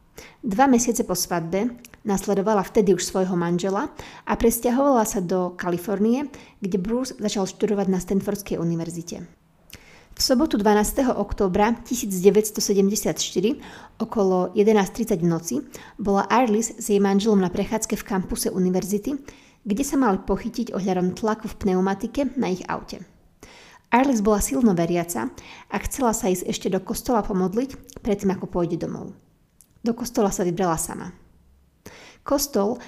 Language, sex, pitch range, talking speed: Slovak, female, 185-230 Hz, 130 wpm